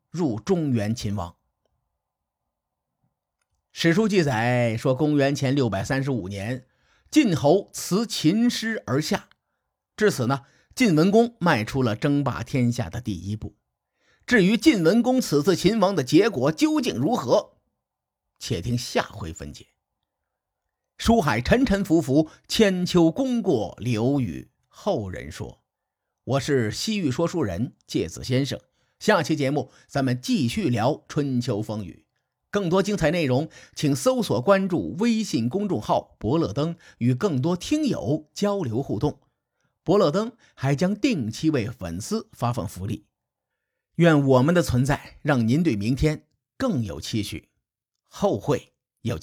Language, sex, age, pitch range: Chinese, male, 50-69, 120-185 Hz